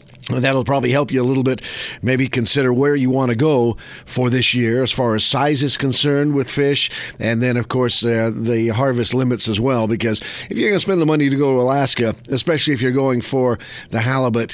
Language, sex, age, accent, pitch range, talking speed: English, male, 50-69, American, 120-135 Hz, 225 wpm